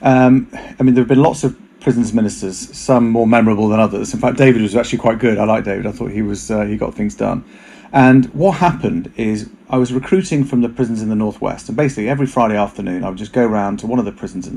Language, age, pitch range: English, 30-49, 105-130 Hz